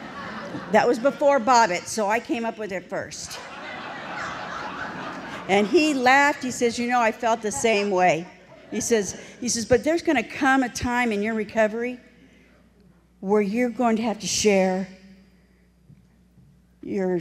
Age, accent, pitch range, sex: 60-79, American, 170-210 Hz, female